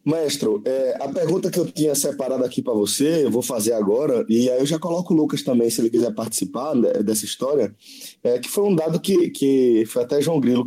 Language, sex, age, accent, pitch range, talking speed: Portuguese, male, 20-39, Brazilian, 115-160 Hz, 230 wpm